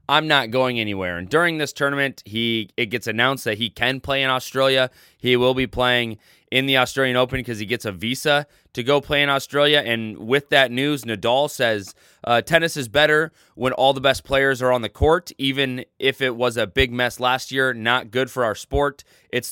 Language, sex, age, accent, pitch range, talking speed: English, male, 20-39, American, 115-140 Hz, 215 wpm